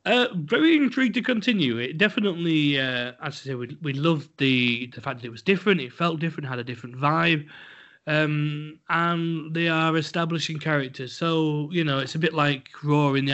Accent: British